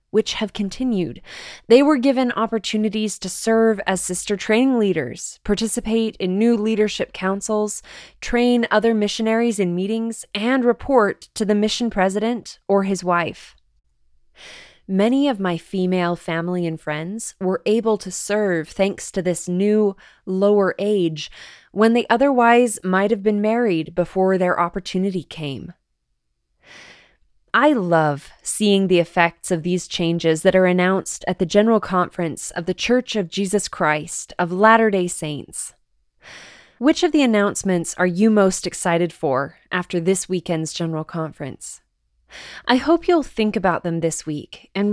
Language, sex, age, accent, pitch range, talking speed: English, female, 20-39, American, 175-225 Hz, 145 wpm